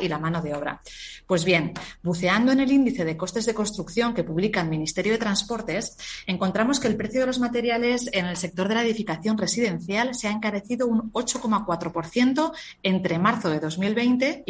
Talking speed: 180 wpm